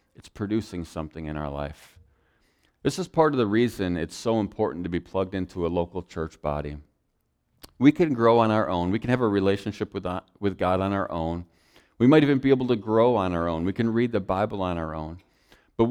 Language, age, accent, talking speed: English, 40-59, American, 220 wpm